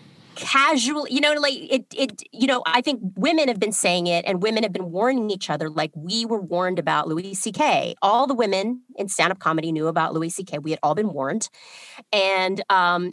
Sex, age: female, 30-49